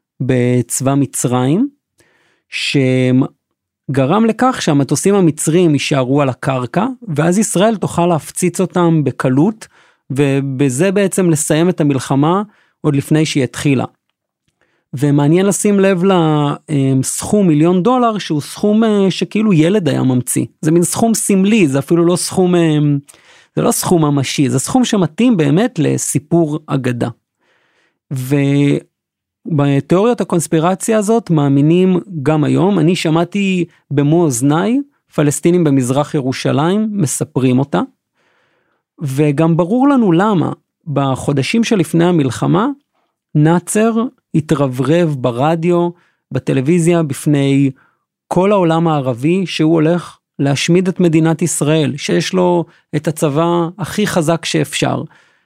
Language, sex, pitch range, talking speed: Hebrew, male, 145-185 Hz, 105 wpm